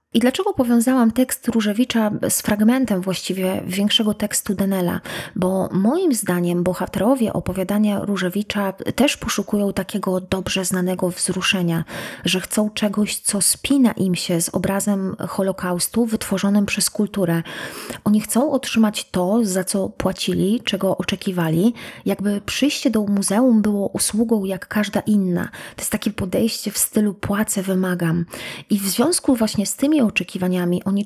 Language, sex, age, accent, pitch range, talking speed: Polish, female, 20-39, native, 190-225 Hz, 135 wpm